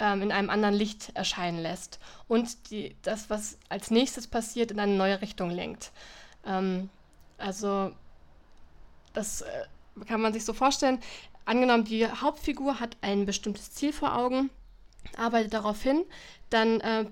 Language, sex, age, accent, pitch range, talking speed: German, female, 20-39, German, 205-235 Hz, 140 wpm